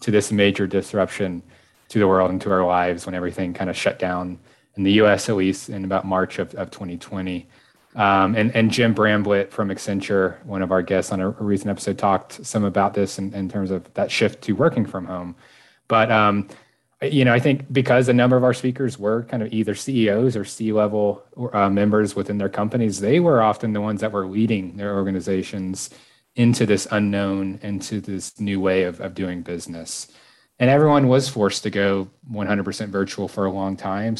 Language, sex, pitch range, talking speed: English, male, 95-115 Hz, 205 wpm